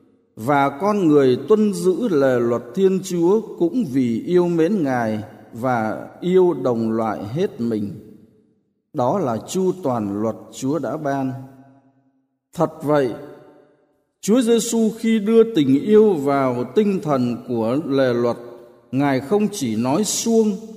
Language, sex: Vietnamese, male